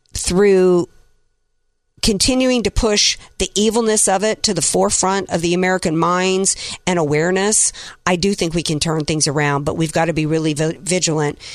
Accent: American